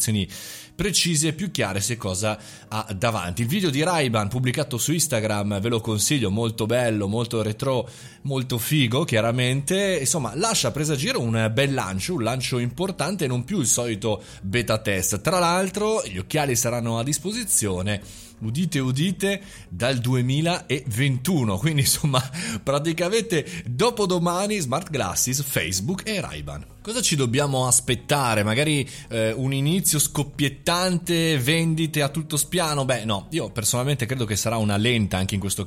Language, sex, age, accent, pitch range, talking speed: Italian, male, 30-49, native, 110-150 Hz, 145 wpm